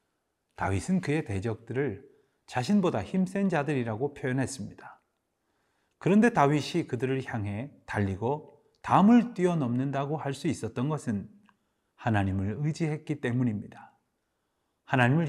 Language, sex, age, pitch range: Korean, male, 30-49, 105-150 Hz